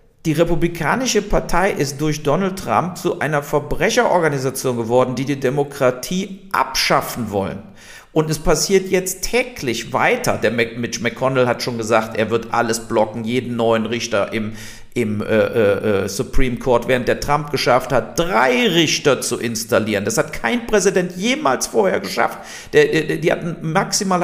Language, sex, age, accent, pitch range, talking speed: German, male, 50-69, German, 125-185 Hz, 155 wpm